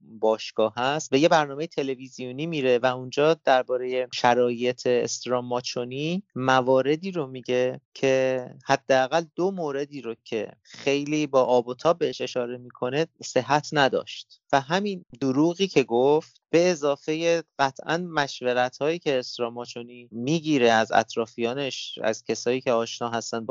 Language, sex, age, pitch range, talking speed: Persian, male, 30-49, 120-145 Hz, 130 wpm